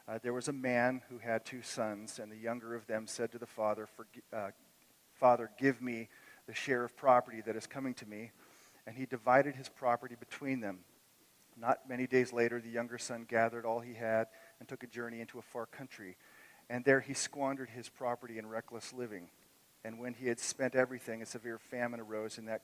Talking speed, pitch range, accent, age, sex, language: 205 wpm, 115-135 Hz, American, 40-59, male, English